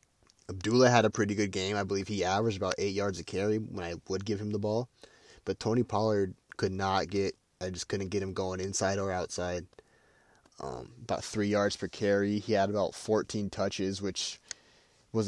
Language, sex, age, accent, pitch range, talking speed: English, male, 20-39, American, 95-105 Hz, 195 wpm